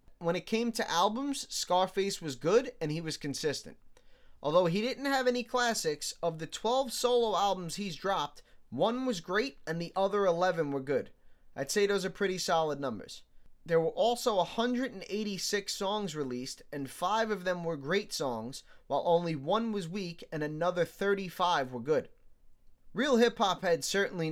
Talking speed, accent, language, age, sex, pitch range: 170 wpm, American, English, 20-39, male, 150-200 Hz